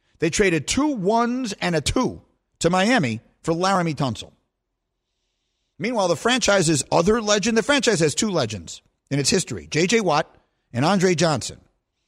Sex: male